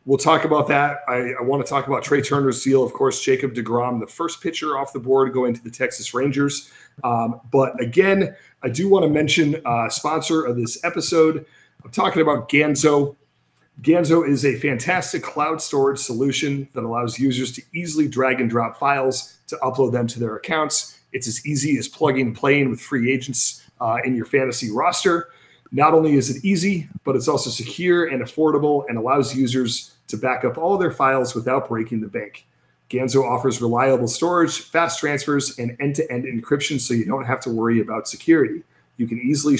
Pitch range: 125-155 Hz